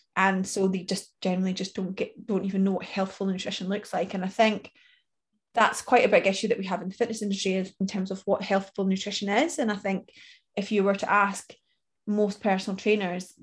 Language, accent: English, British